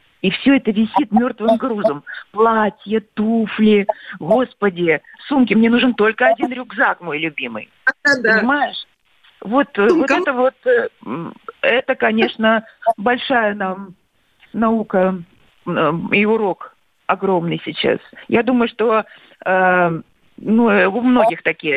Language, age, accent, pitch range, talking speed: Russian, 50-69, native, 190-245 Hz, 105 wpm